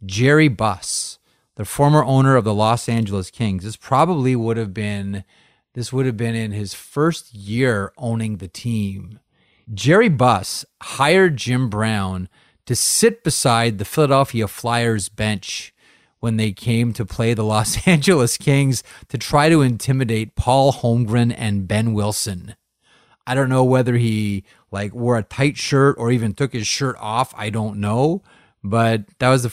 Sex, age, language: male, 30-49, English